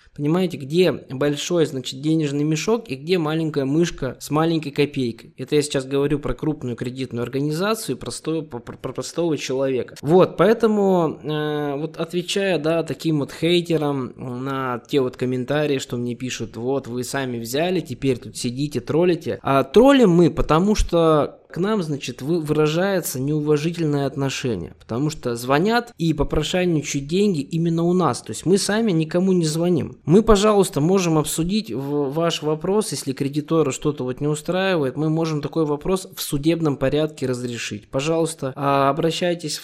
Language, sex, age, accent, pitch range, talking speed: Russian, male, 20-39, native, 135-170 Hz, 150 wpm